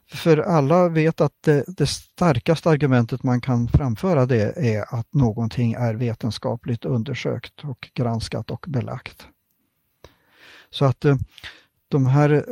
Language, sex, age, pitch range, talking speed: Swedish, male, 50-69, 120-145 Hz, 125 wpm